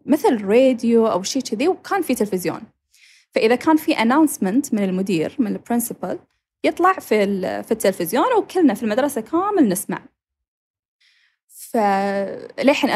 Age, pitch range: 10-29, 210-285 Hz